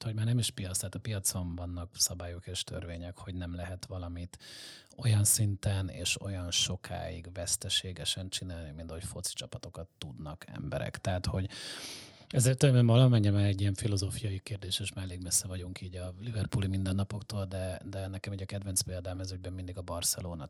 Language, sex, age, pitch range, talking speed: Hungarian, male, 30-49, 90-110 Hz, 170 wpm